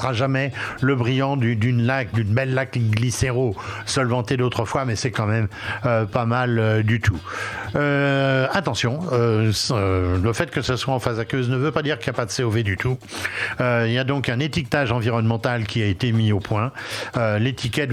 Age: 60-79